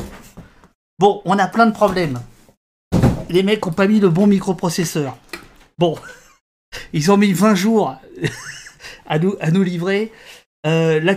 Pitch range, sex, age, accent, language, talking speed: 130-175 Hz, male, 50-69, French, French, 145 wpm